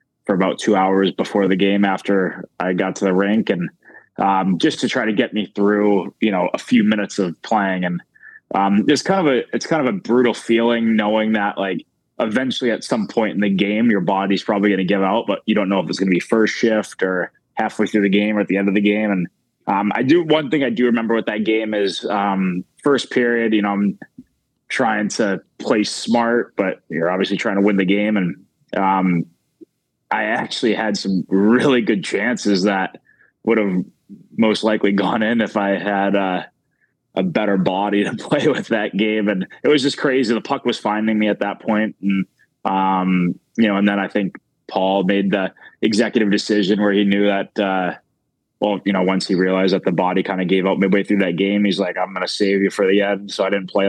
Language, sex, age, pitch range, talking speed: English, male, 20-39, 95-110 Hz, 225 wpm